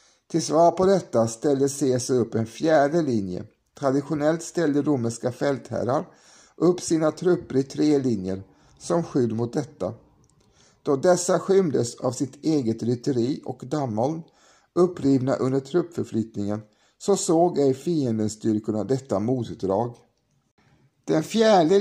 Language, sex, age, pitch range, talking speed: Swedish, male, 50-69, 115-155 Hz, 125 wpm